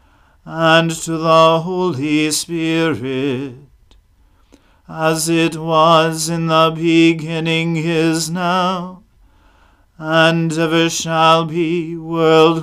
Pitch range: 150-165 Hz